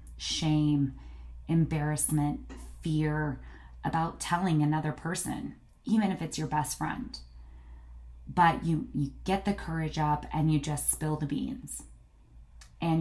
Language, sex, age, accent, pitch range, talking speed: English, female, 20-39, American, 120-165 Hz, 125 wpm